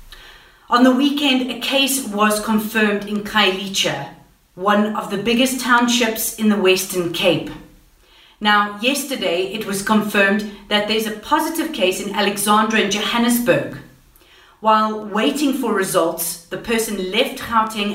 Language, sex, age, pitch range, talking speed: English, female, 40-59, 185-235 Hz, 135 wpm